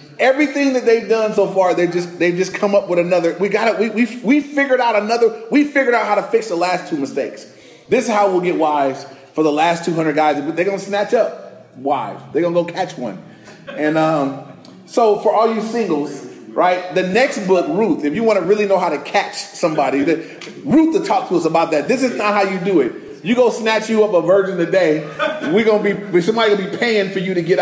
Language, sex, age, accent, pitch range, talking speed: English, male, 30-49, American, 165-215 Hz, 240 wpm